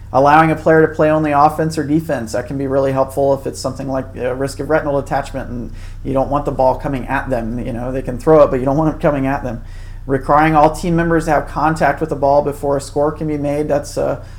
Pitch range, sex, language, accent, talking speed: 125-150 Hz, male, English, American, 265 wpm